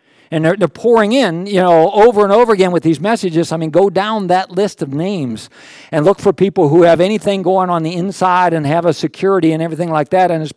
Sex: male